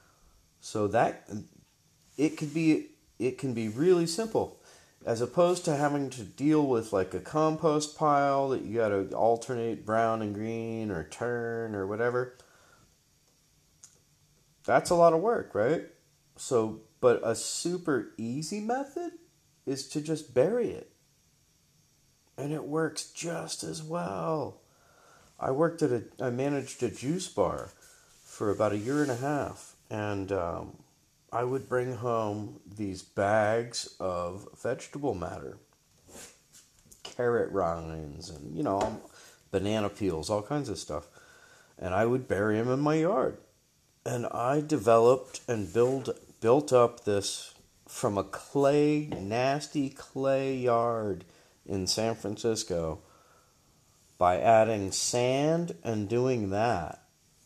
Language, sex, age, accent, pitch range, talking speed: English, male, 30-49, American, 105-150 Hz, 130 wpm